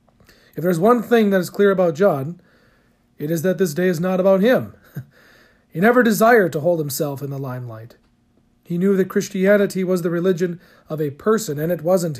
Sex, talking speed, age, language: male, 200 wpm, 40-59, English